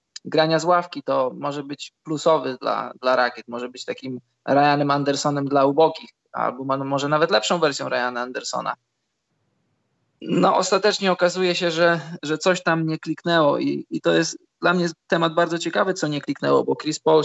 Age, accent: 20-39, native